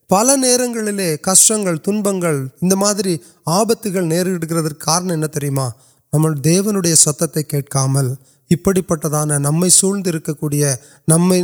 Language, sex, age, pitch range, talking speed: Urdu, male, 30-49, 150-185 Hz, 65 wpm